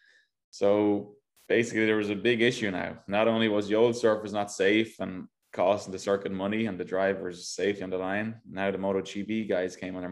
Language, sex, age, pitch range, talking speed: English, male, 20-39, 95-110 Hz, 210 wpm